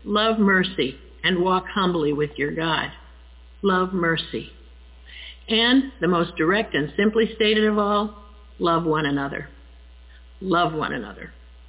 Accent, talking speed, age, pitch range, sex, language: American, 130 wpm, 50-69, 150-205 Hz, female, English